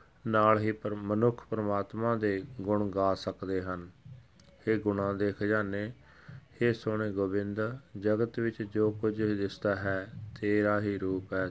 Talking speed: 135 wpm